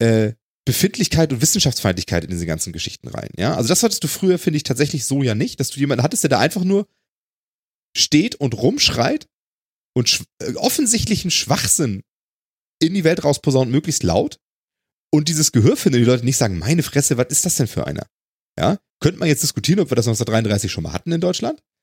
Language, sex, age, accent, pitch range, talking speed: German, male, 30-49, German, 130-180 Hz, 200 wpm